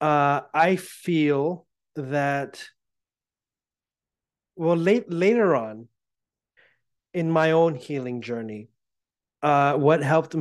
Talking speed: 90 wpm